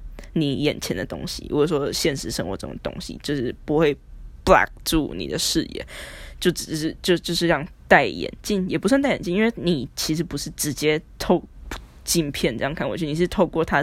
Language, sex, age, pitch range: Chinese, female, 10-29, 155-190 Hz